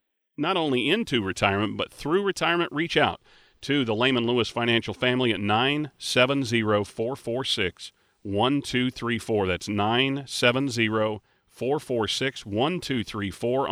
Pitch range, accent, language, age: 120-160 Hz, American, English, 40-59